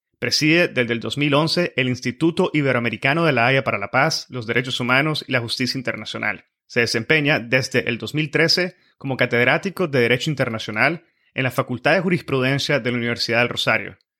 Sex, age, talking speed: male, 30-49, 170 wpm